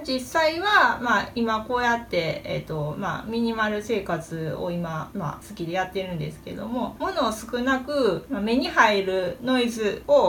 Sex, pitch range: female, 185-245 Hz